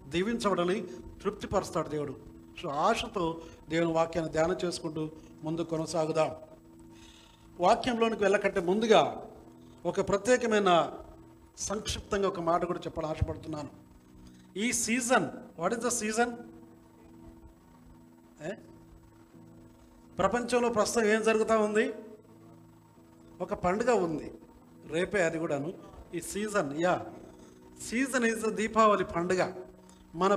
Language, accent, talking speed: Telugu, native, 95 wpm